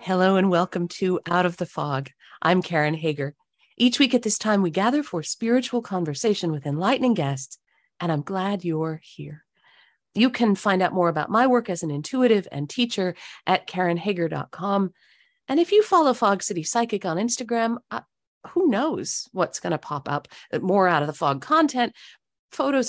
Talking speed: 180 wpm